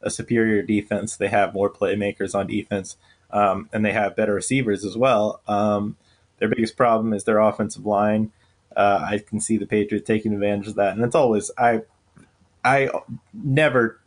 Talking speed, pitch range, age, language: 175 wpm, 105-120 Hz, 20-39, English